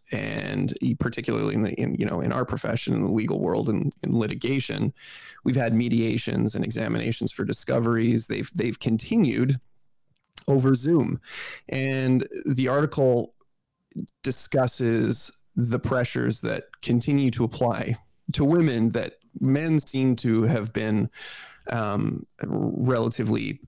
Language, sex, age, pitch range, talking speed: English, male, 20-39, 115-135 Hz, 125 wpm